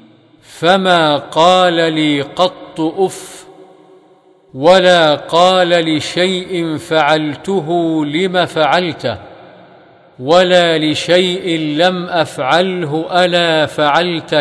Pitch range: 150-175 Hz